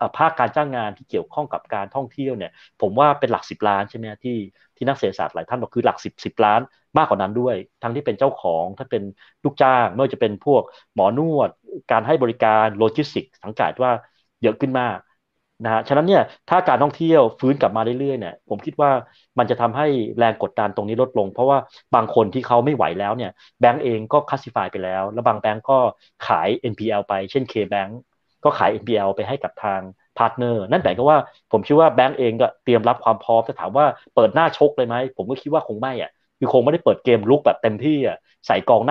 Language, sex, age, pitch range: Thai, male, 30-49, 110-135 Hz